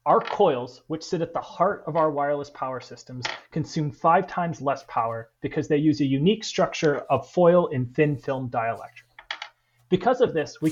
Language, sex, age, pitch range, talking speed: English, male, 30-49, 145-180 Hz, 185 wpm